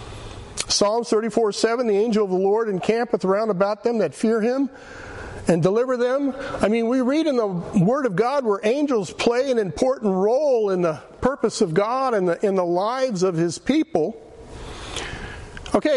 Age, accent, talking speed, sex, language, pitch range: 50-69, American, 175 wpm, male, English, 200-260 Hz